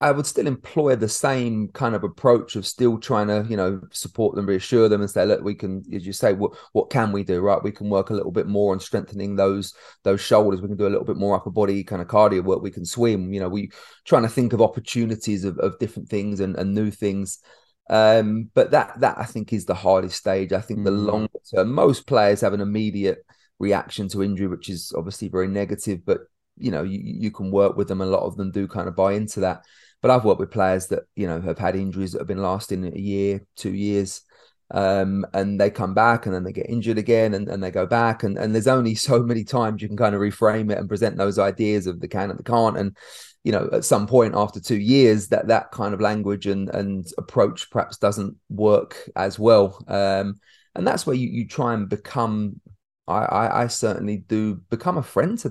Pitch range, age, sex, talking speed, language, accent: 95-110 Hz, 30-49, male, 240 wpm, English, British